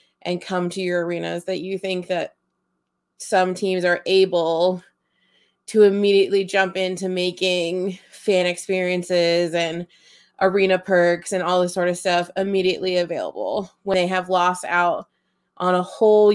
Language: English